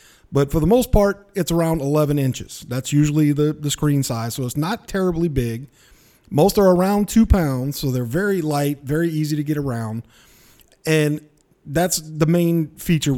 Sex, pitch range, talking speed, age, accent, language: male, 140-170 Hz, 180 wpm, 40-59, American, English